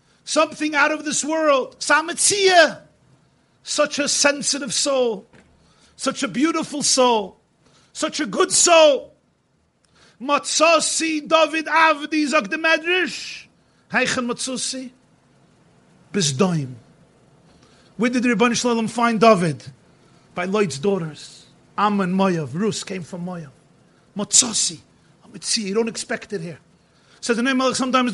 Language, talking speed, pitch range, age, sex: English, 100 wpm, 195-265 Hz, 50-69, male